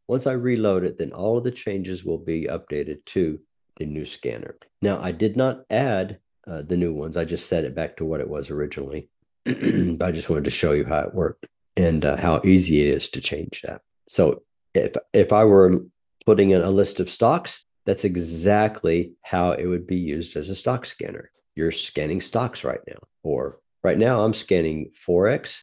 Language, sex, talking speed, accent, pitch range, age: English, male, 205 wpm, American, 85-100 Hz, 50-69